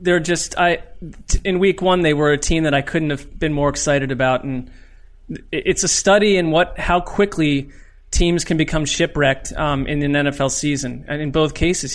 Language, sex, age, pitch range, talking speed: English, male, 30-49, 140-170 Hz, 195 wpm